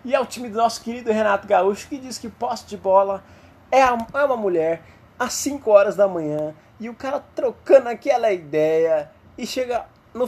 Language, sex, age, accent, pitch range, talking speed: Portuguese, male, 20-39, Brazilian, 170-245 Hz, 185 wpm